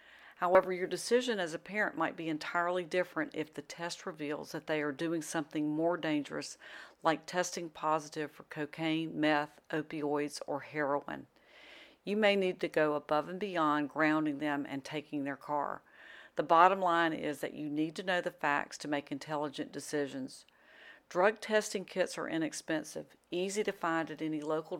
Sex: female